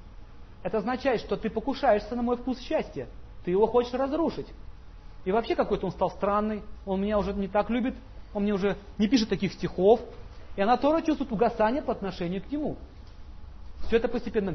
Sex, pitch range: male, 180-265 Hz